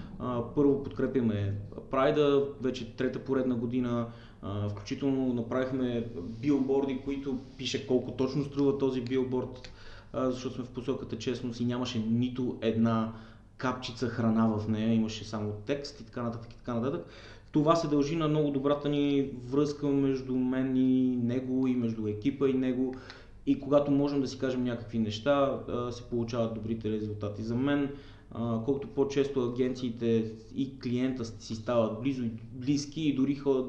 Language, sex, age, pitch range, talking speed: Bulgarian, male, 20-39, 115-135 Hz, 140 wpm